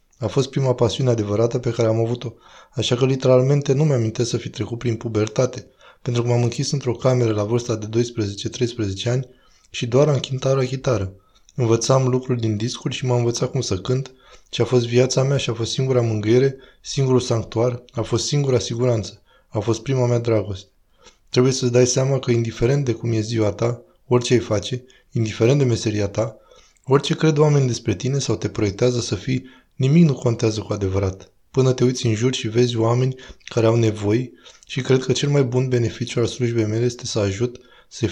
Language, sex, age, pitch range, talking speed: Romanian, male, 20-39, 110-130 Hz, 195 wpm